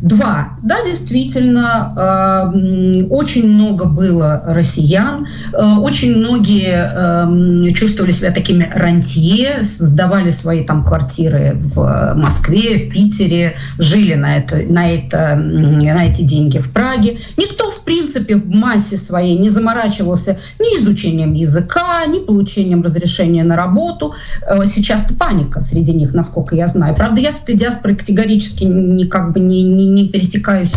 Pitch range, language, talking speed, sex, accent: 170-215 Hz, Russian, 125 wpm, female, native